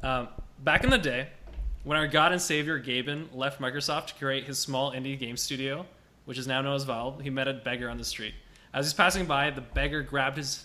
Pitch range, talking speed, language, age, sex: 130-160 Hz, 235 wpm, English, 20-39, male